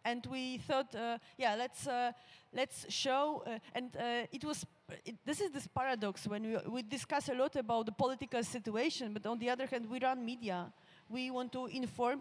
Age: 30-49